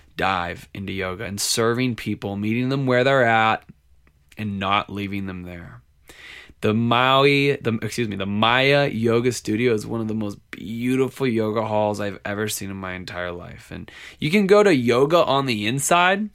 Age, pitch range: 20-39, 110-155 Hz